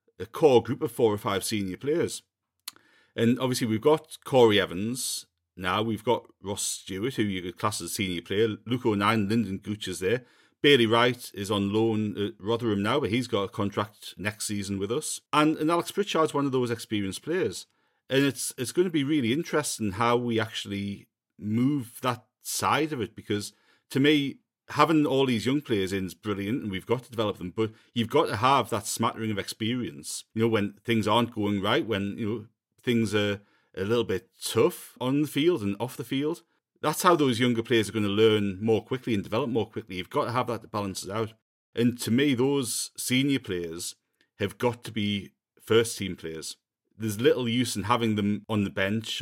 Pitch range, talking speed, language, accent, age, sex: 105-125 Hz, 205 wpm, English, British, 40-59, male